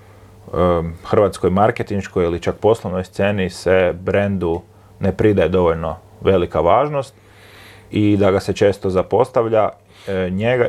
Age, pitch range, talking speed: 30-49, 90-105 Hz, 120 wpm